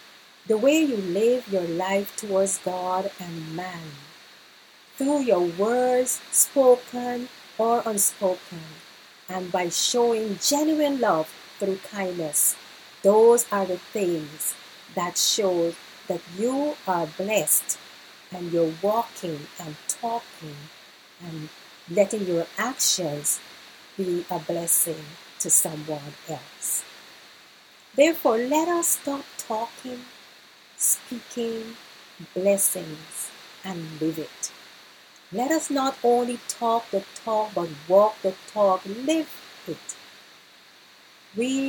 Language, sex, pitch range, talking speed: English, female, 175-235 Hz, 105 wpm